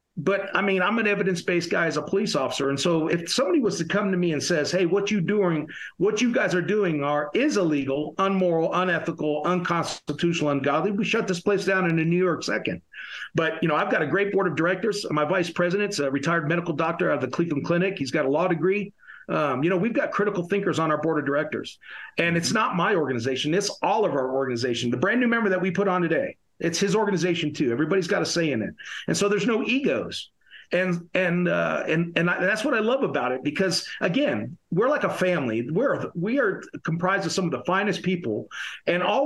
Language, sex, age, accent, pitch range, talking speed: English, male, 50-69, American, 160-195 Hz, 230 wpm